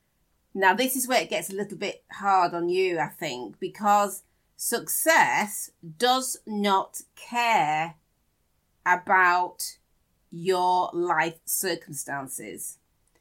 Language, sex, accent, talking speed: English, female, British, 105 wpm